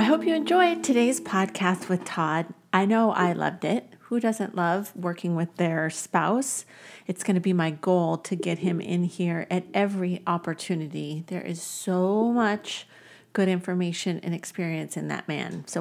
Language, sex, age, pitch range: English, female, 40-59, 175-215 Hz